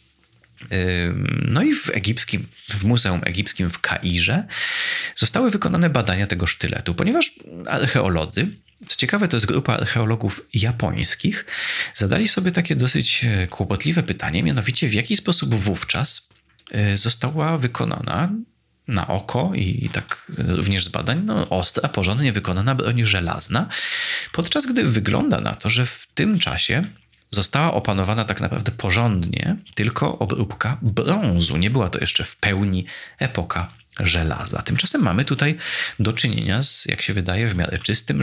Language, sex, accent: Polish, male, native